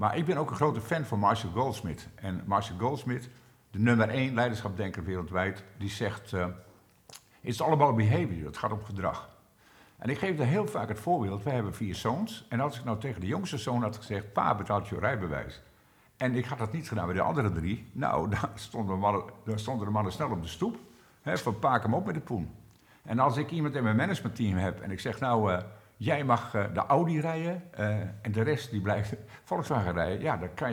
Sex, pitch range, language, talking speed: male, 100-125 Hz, Dutch, 225 wpm